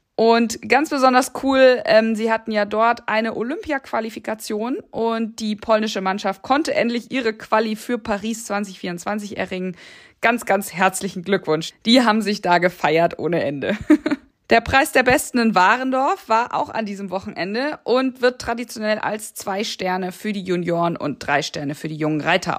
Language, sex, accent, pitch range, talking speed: German, female, German, 185-235 Hz, 165 wpm